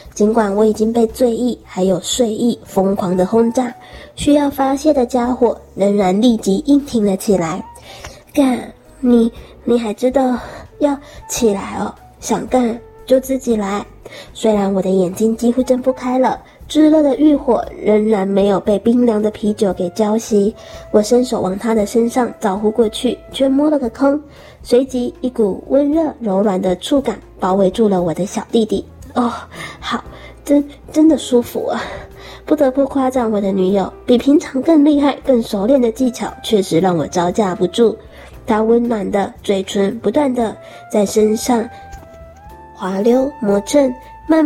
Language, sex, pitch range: Chinese, male, 200-255 Hz